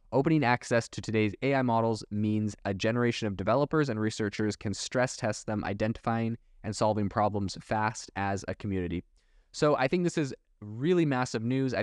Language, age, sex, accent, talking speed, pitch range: English, 20-39, male, American, 170 wpm, 105-125 Hz